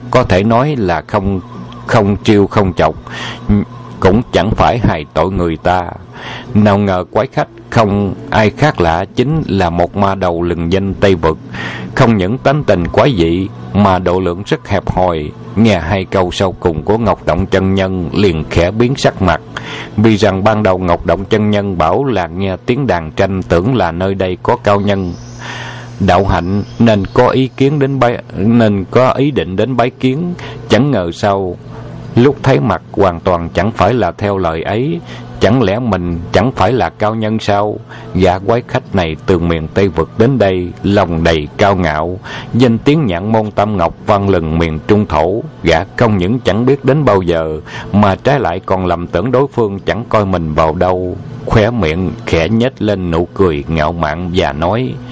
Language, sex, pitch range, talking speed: Vietnamese, male, 90-115 Hz, 195 wpm